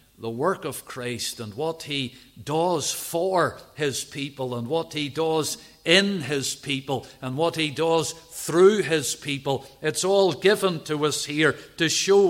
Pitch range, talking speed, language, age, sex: 140-175 Hz, 160 wpm, English, 50-69, male